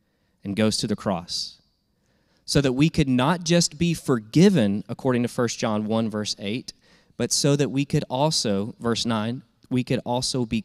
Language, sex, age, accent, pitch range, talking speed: English, male, 20-39, American, 100-130 Hz, 180 wpm